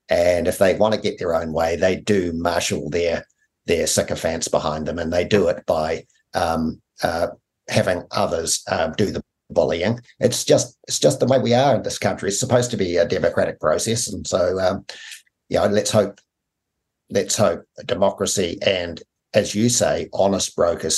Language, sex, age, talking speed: English, male, 50-69, 185 wpm